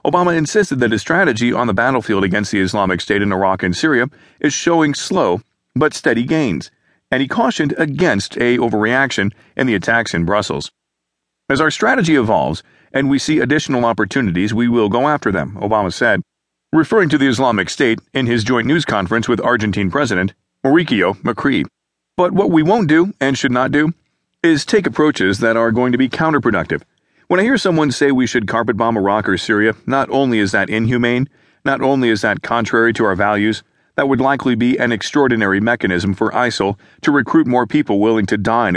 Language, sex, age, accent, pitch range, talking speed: English, male, 40-59, American, 105-135 Hz, 190 wpm